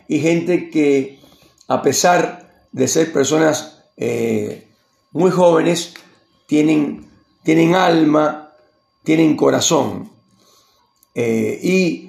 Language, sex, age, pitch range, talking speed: Spanish, male, 40-59, 150-190 Hz, 90 wpm